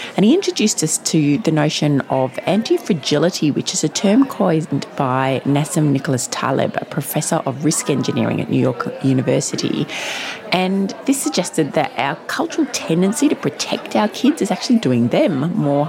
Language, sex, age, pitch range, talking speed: English, female, 30-49, 155-265 Hz, 160 wpm